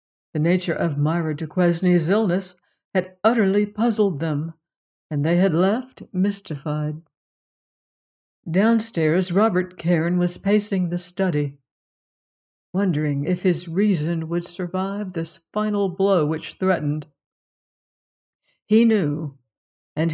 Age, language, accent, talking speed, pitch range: 60-79, English, American, 105 wpm, 155-195 Hz